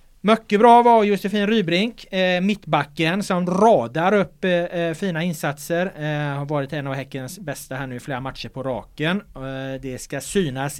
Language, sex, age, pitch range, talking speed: Swedish, male, 30-49, 130-165 Hz, 170 wpm